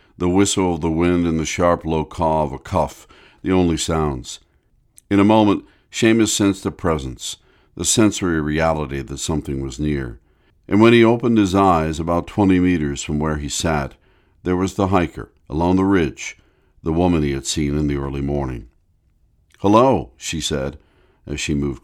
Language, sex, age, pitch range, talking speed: English, male, 50-69, 75-90 Hz, 180 wpm